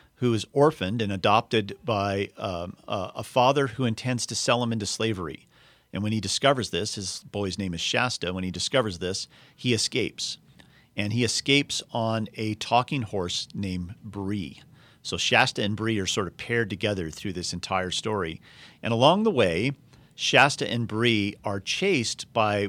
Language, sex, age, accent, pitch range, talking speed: English, male, 40-59, American, 100-130 Hz, 170 wpm